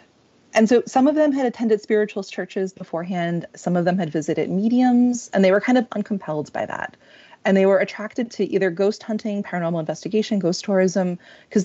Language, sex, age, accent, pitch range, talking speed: English, female, 30-49, American, 170-220 Hz, 190 wpm